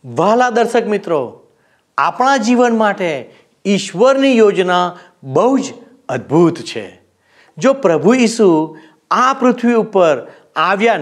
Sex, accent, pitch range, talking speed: male, native, 175-250 Hz, 95 wpm